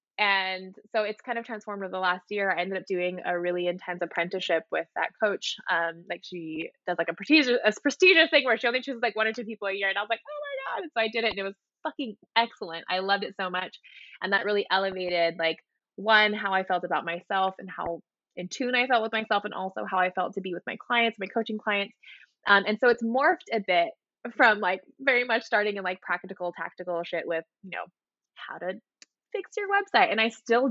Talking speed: 240 wpm